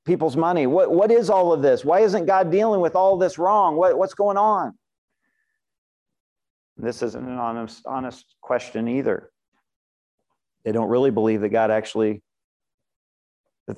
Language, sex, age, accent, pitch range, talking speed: English, male, 50-69, American, 120-155 Hz, 155 wpm